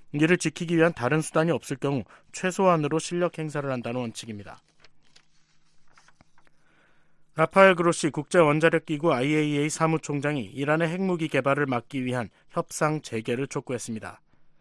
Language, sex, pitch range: Korean, male, 130-170 Hz